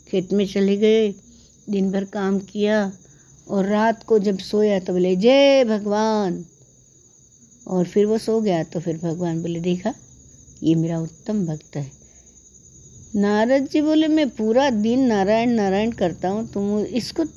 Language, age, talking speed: Hindi, 60-79, 150 wpm